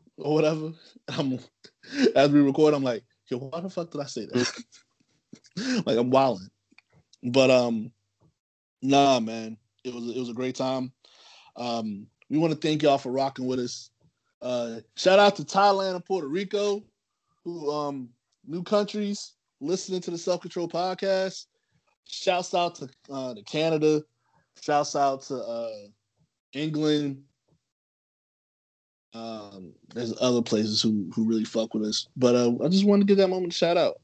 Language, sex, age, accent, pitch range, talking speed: English, male, 20-39, American, 115-155 Hz, 160 wpm